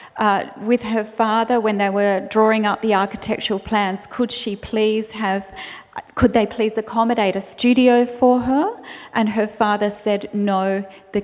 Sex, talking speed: female, 160 wpm